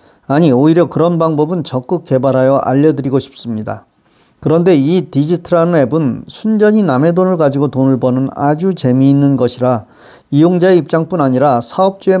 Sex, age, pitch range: male, 40-59, 135-175 Hz